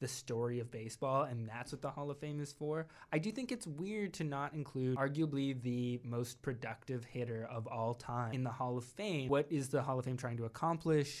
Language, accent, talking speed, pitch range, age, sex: English, American, 230 wpm, 115-140 Hz, 20-39, male